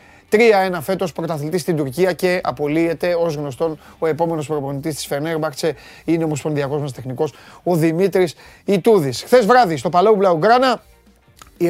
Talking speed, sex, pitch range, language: 145 wpm, male, 145-185 Hz, Greek